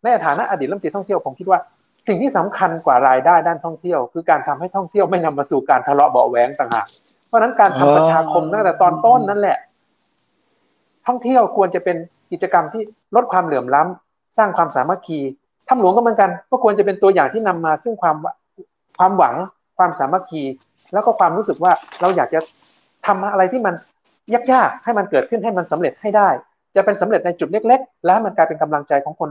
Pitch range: 155-210 Hz